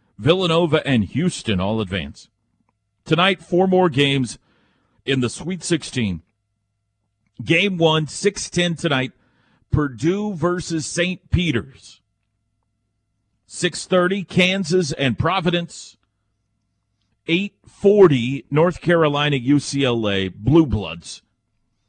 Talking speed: 90 wpm